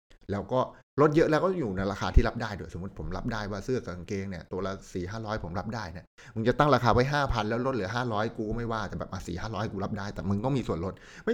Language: Thai